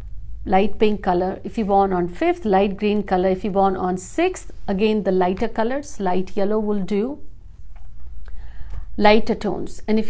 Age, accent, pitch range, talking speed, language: 50-69, native, 190-240 Hz, 165 wpm, Hindi